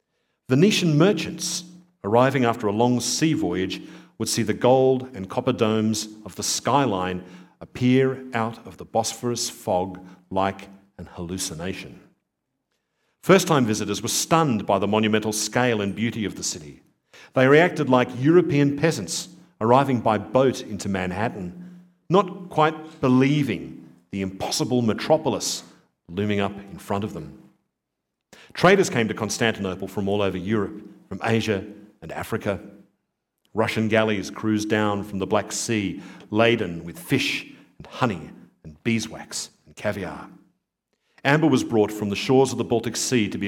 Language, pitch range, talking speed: English, 100-135 Hz, 140 wpm